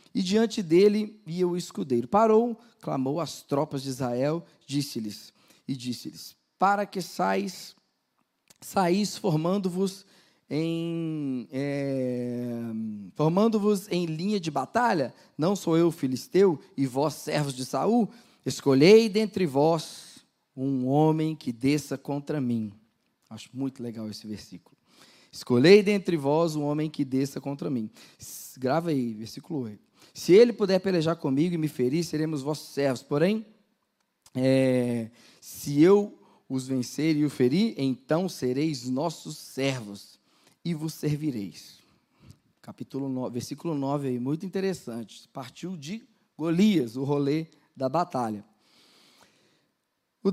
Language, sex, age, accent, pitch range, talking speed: Portuguese, male, 20-39, Brazilian, 130-195 Hz, 125 wpm